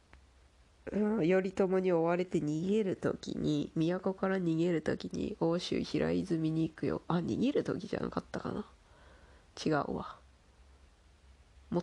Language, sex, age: Japanese, female, 20-39